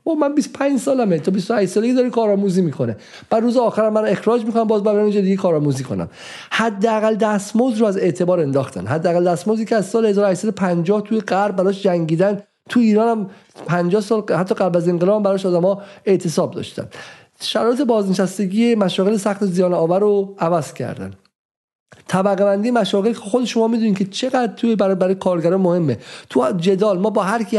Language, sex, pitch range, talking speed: Persian, male, 170-215 Hz, 175 wpm